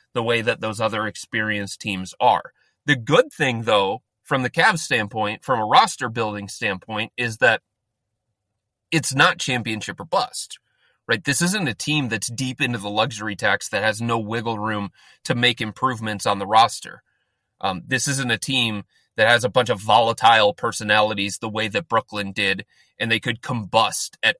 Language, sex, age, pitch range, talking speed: English, male, 30-49, 105-130 Hz, 175 wpm